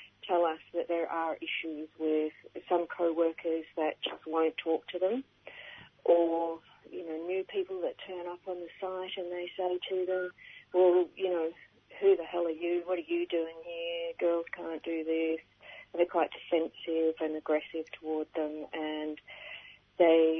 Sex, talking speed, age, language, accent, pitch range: female, 170 wpm, 40-59, English, Australian, 155-175 Hz